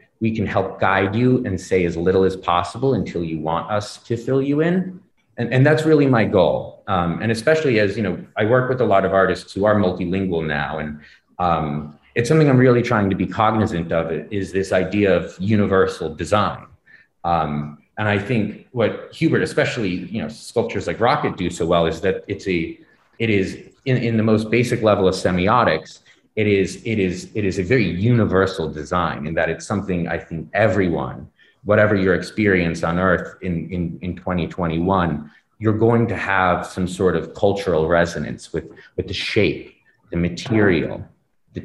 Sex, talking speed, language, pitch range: male, 185 wpm, English, 85-110 Hz